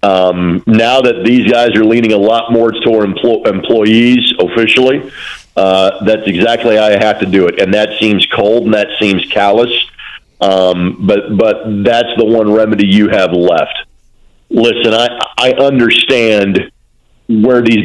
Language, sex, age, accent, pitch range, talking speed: English, male, 50-69, American, 105-120 Hz, 160 wpm